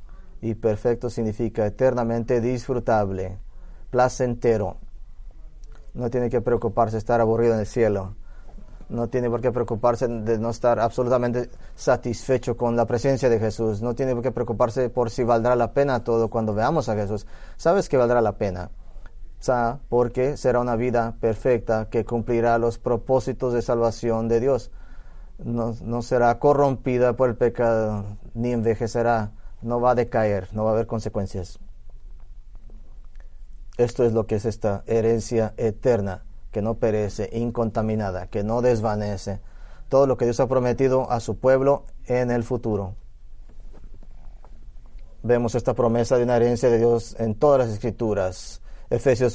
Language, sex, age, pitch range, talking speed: English, male, 20-39, 110-125 Hz, 150 wpm